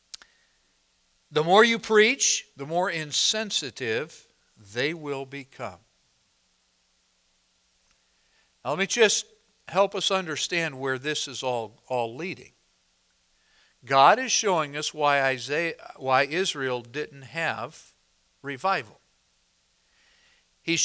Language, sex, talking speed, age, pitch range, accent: English, male, 100 wpm, 60-79, 140-220 Hz, American